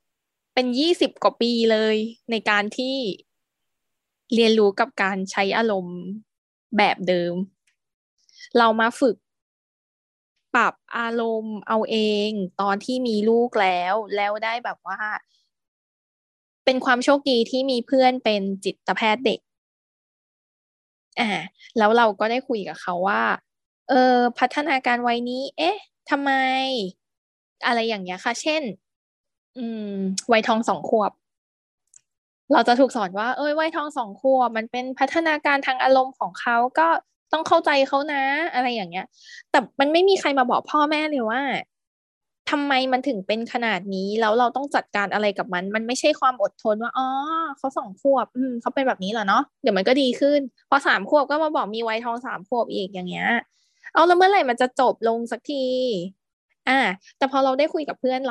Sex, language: female, Thai